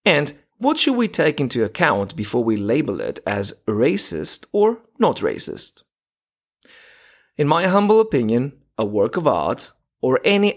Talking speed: 150 wpm